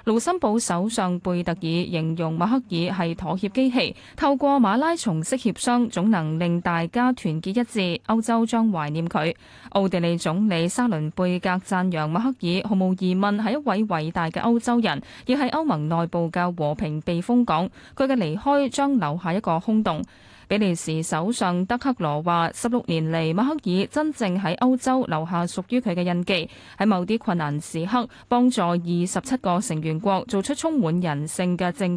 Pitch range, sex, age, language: 170-240 Hz, female, 20-39, Chinese